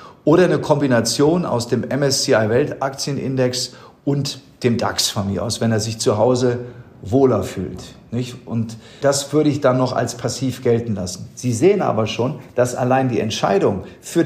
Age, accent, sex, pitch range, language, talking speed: 40-59, German, male, 115-140 Hz, German, 170 wpm